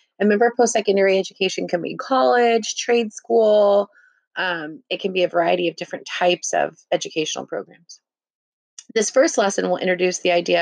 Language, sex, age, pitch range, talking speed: English, female, 30-49, 180-215 Hz, 160 wpm